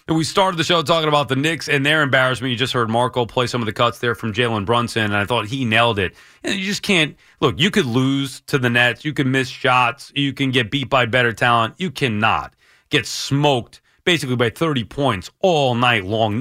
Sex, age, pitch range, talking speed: male, 30-49, 115-155 Hz, 240 wpm